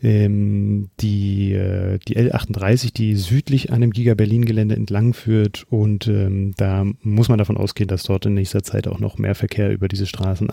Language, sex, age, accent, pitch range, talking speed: German, male, 30-49, German, 100-115 Hz, 165 wpm